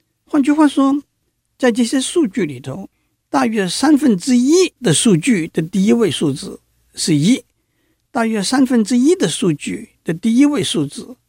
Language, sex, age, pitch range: Chinese, male, 60-79, 155-245 Hz